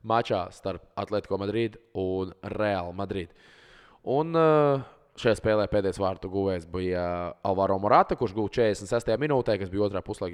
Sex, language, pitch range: male, English, 95-115 Hz